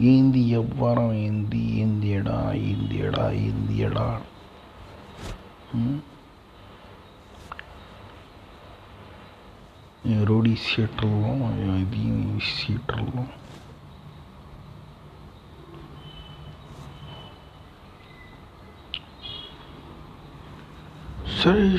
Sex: male